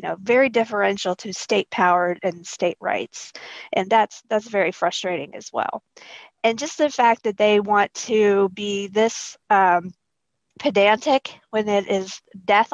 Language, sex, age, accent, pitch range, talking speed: English, female, 40-59, American, 200-250 Hz, 150 wpm